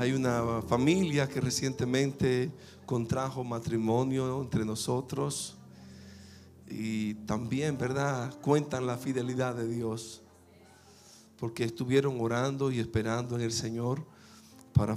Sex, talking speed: male, 105 wpm